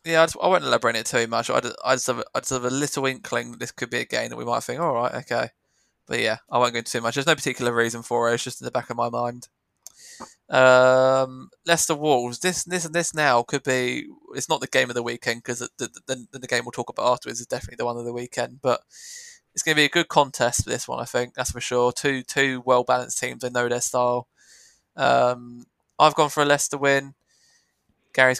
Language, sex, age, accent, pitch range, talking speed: English, male, 20-39, British, 120-135 Hz, 255 wpm